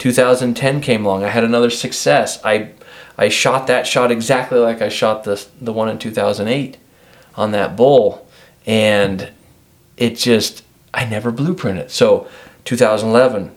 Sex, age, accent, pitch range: male, 40-59, American, 105-125 Hz